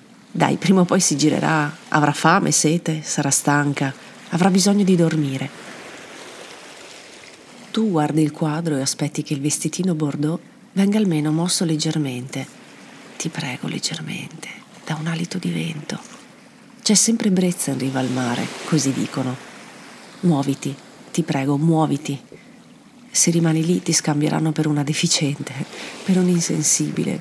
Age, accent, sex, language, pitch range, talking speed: 40-59, native, female, Italian, 150-200 Hz, 135 wpm